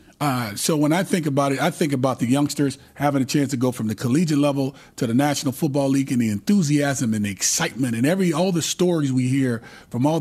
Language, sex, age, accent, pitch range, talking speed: English, male, 40-59, American, 130-165 Hz, 240 wpm